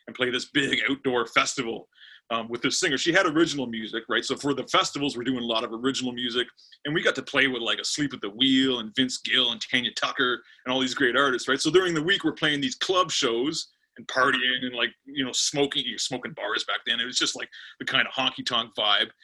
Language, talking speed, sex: English, 255 wpm, male